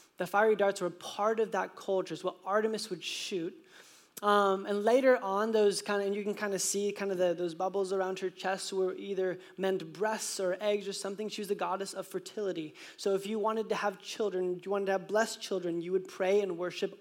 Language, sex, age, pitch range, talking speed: English, male, 20-39, 200-250 Hz, 230 wpm